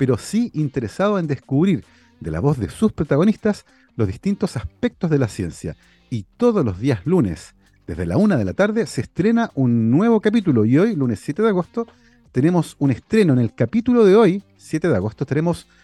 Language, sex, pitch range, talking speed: Spanish, male, 120-195 Hz, 195 wpm